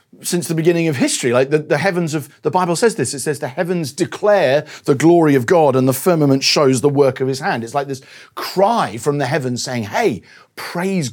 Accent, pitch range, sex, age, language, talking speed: British, 125-165 Hz, male, 40-59, English, 225 wpm